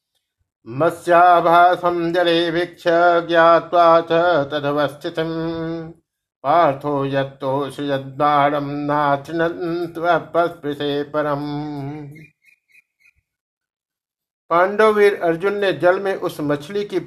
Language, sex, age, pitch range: Hindi, male, 60-79, 145-170 Hz